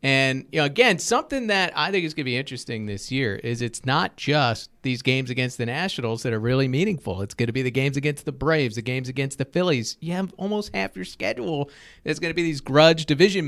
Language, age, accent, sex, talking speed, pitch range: English, 40-59, American, male, 245 wpm, 130-160 Hz